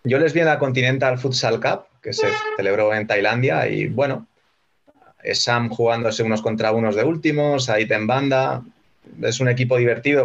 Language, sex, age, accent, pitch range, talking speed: Spanish, male, 30-49, Spanish, 110-135 Hz, 170 wpm